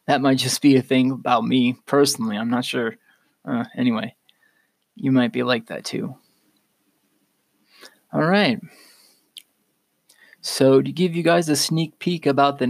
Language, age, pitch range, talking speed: English, 20-39, 130-145 Hz, 150 wpm